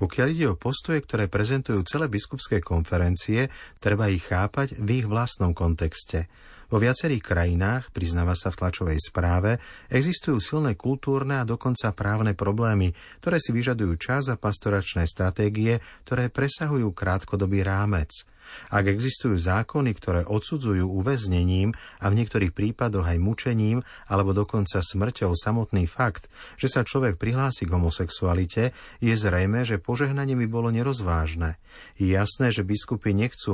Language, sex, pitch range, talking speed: Slovak, male, 95-125 Hz, 140 wpm